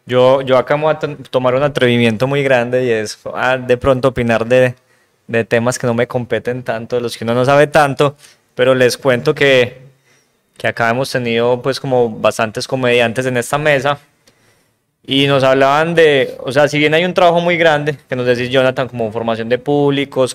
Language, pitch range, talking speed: Spanish, 120-140 Hz, 190 wpm